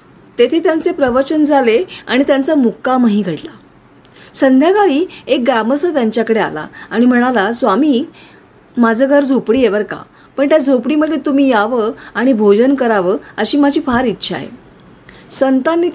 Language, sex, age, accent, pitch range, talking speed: Marathi, female, 30-49, native, 220-280 Hz, 130 wpm